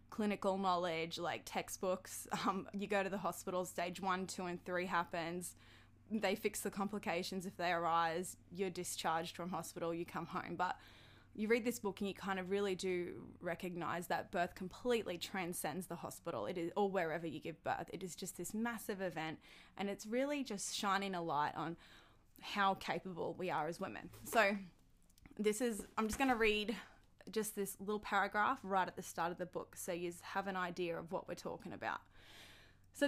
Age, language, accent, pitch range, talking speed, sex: 20-39, English, Australian, 175-205 Hz, 190 wpm, female